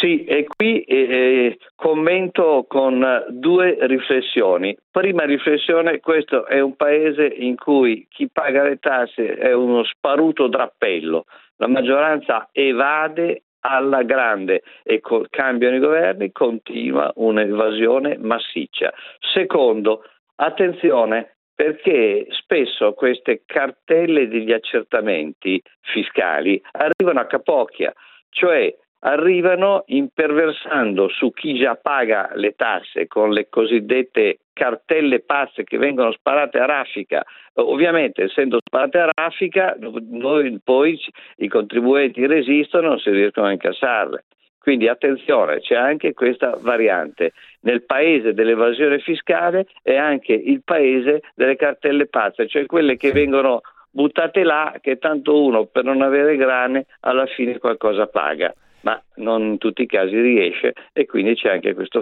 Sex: male